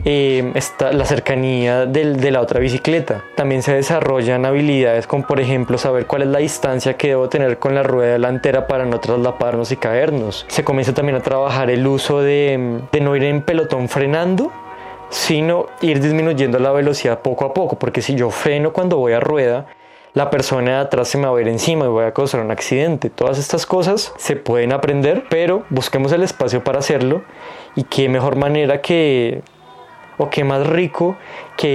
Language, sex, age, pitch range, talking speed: Spanish, male, 20-39, 130-150 Hz, 190 wpm